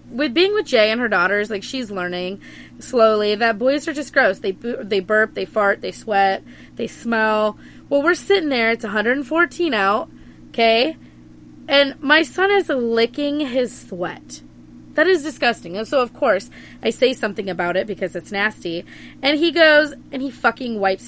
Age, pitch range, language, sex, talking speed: 20-39, 200-280 Hz, English, female, 175 wpm